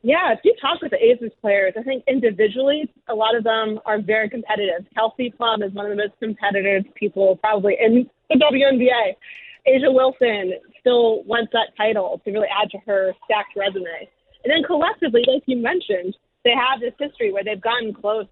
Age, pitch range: 20-39, 205-255 Hz